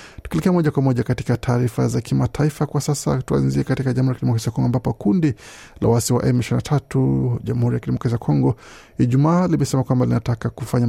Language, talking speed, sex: Swahili, 165 wpm, male